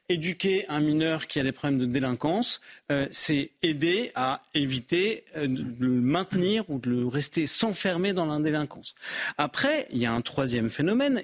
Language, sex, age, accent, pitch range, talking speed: French, male, 40-59, French, 125-190 Hz, 165 wpm